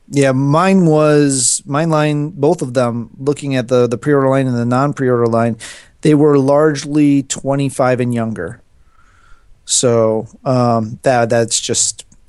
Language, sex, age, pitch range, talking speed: English, male, 30-49, 120-155 Hz, 140 wpm